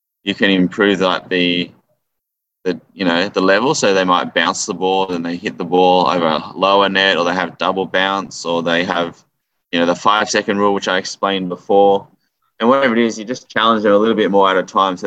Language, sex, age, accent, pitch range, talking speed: English, male, 10-29, Australian, 90-100 Hz, 235 wpm